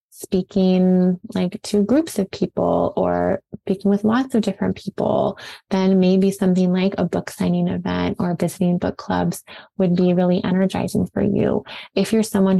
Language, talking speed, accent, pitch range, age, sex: English, 160 wpm, American, 180-205 Hz, 20-39, female